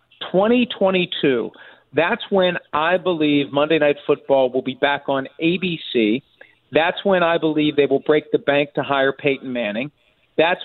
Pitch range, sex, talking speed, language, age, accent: 140-165 Hz, male, 150 wpm, English, 50-69, American